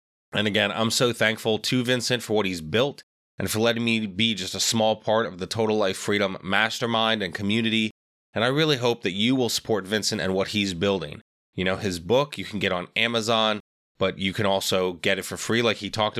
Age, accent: 20-39, American